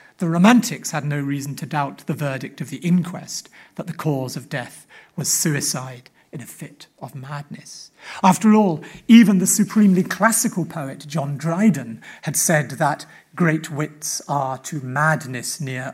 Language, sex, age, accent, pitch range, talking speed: English, male, 40-59, British, 150-215 Hz, 160 wpm